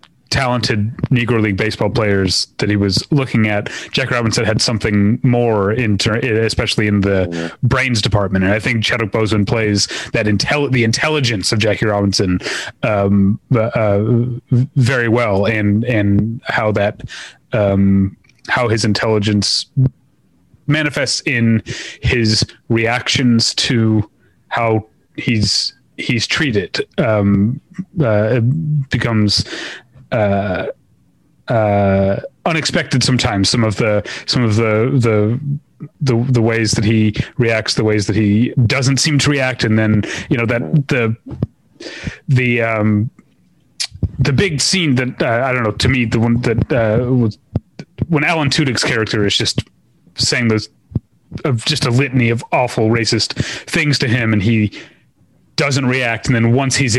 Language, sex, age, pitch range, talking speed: English, male, 30-49, 105-130 Hz, 140 wpm